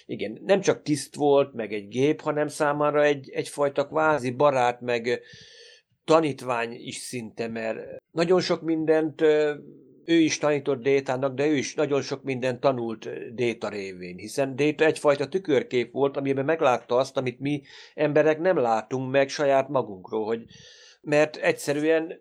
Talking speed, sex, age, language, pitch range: 145 wpm, male, 50-69, Hungarian, 120-150 Hz